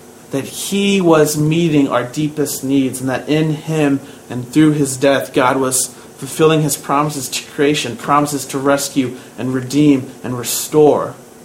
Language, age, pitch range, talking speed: English, 30-49, 130-155 Hz, 150 wpm